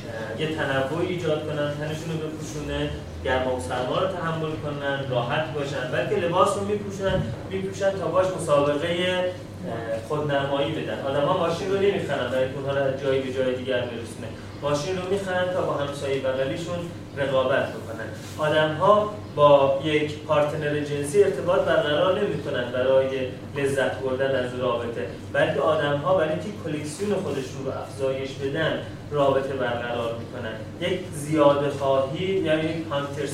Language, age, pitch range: Persian, 30-49, 125-155 Hz